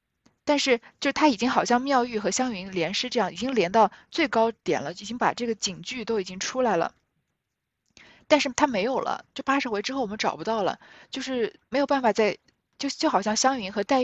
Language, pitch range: Chinese, 190-260 Hz